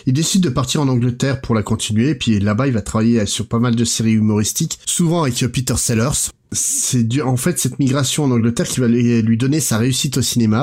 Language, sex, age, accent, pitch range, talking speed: French, male, 30-49, French, 110-135 Hz, 225 wpm